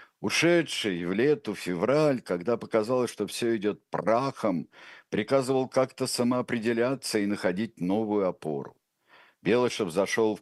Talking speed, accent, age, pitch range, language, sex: 120 wpm, native, 60-79, 95-125 Hz, Russian, male